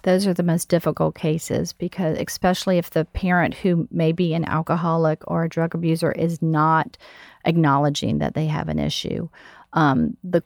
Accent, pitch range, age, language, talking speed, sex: American, 160-190 Hz, 40-59, English, 170 wpm, female